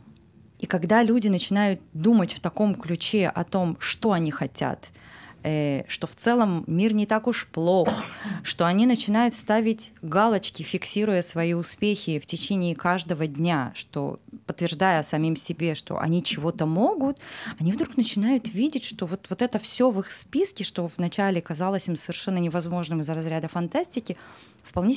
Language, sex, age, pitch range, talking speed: English, female, 20-39, 165-215 Hz, 150 wpm